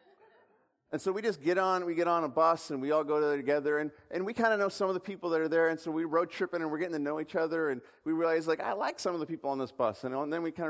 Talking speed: 330 wpm